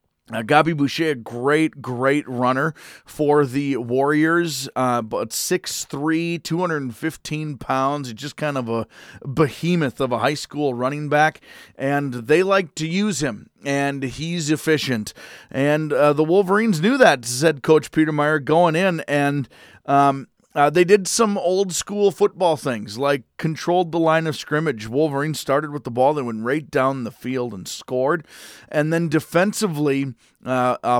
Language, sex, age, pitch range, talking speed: English, male, 30-49, 135-165 Hz, 155 wpm